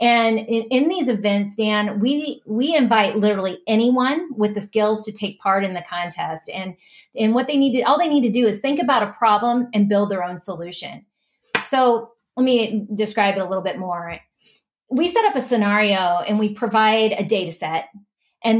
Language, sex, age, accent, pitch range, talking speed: English, female, 30-49, American, 200-245 Hz, 195 wpm